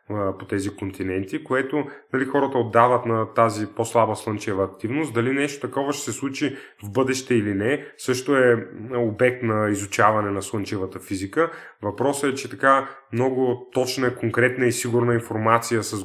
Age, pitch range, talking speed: 20-39, 105-120 Hz, 155 wpm